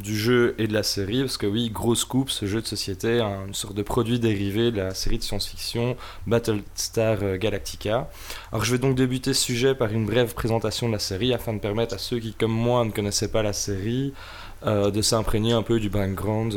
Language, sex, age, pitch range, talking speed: French, male, 20-39, 100-120 Hz, 225 wpm